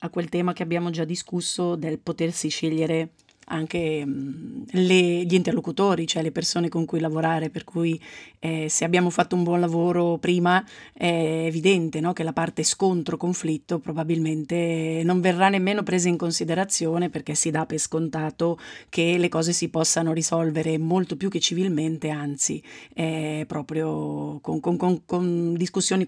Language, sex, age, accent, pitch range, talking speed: Italian, female, 30-49, native, 165-195 Hz, 150 wpm